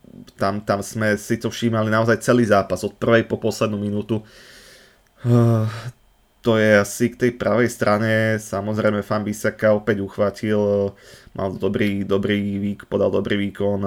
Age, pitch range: 20-39, 100-110 Hz